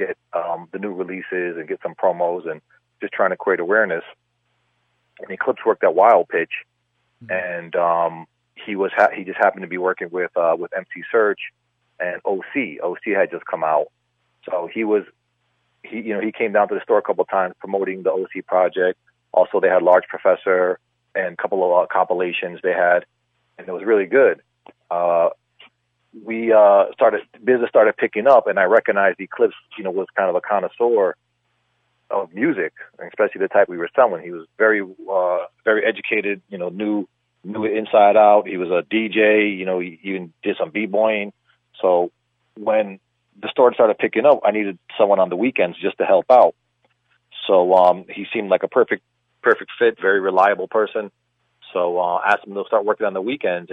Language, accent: English, American